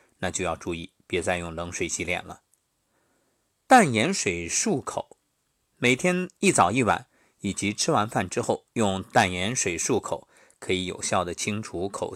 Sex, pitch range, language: male, 95-140 Hz, Chinese